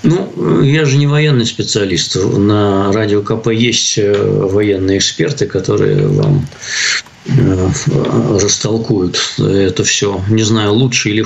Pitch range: 100-125 Hz